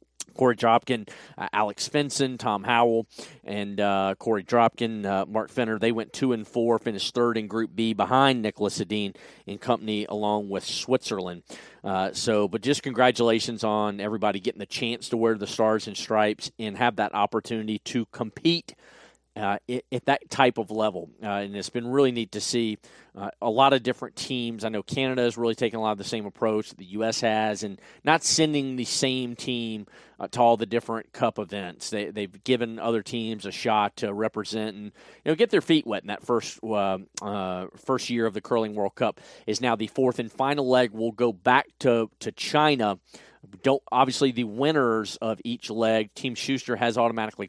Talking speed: 195 wpm